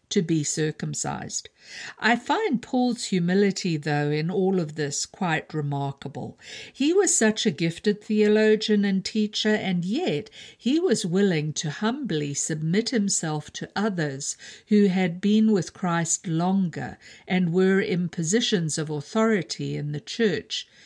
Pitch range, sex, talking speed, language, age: 155-210 Hz, female, 140 wpm, English, 50-69